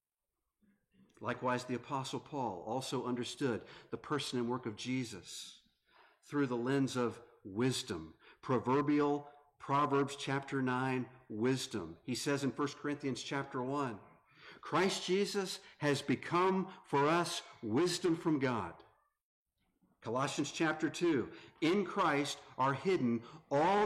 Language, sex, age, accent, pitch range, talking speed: English, male, 50-69, American, 125-180 Hz, 115 wpm